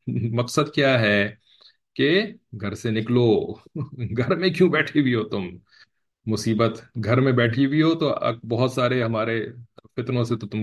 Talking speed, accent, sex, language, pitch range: 160 wpm, Indian, male, English, 105-130 Hz